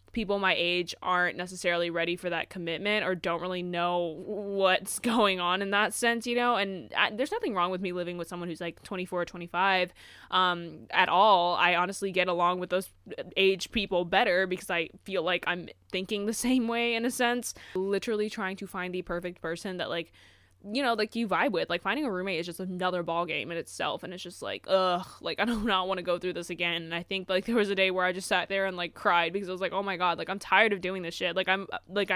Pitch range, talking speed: 175-215 Hz, 250 wpm